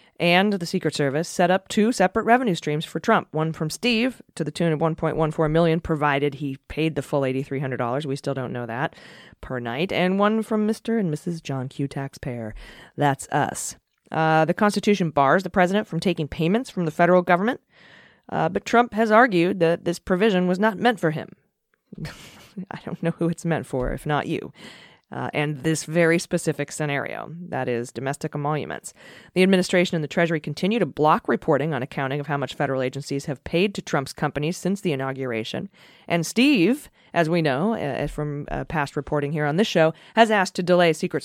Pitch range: 145-185 Hz